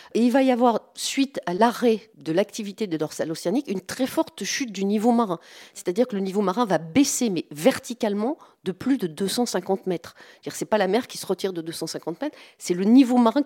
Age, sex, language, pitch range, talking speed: 40-59, female, French, 175-245 Hz, 230 wpm